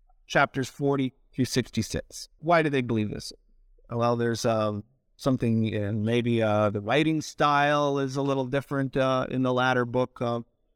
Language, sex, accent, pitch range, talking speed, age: English, male, American, 115-155 Hz, 160 wpm, 50-69